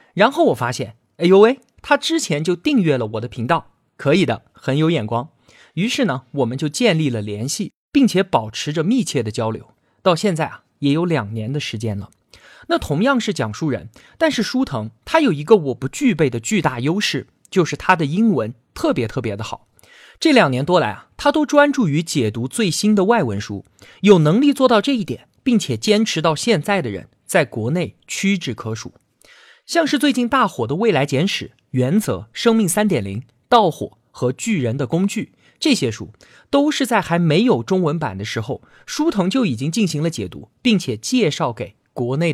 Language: Chinese